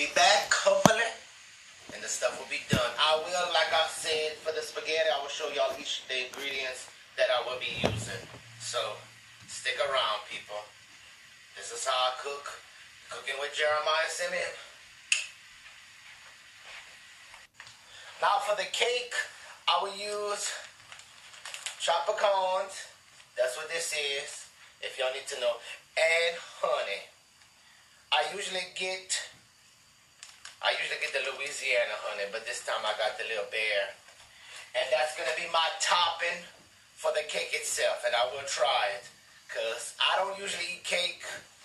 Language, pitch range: English, 140-185 Hz